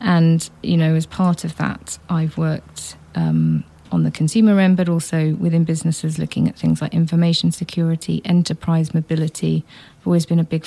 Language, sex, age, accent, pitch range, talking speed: English, female, 40-59, British, 155-180 Hz, 170 wpm